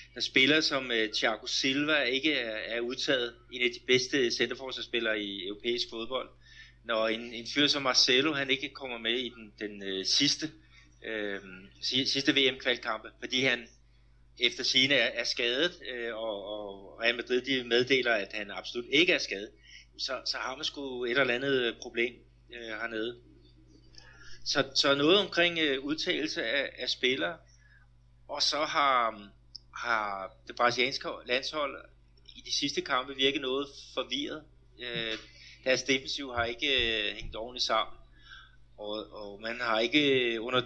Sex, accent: male, native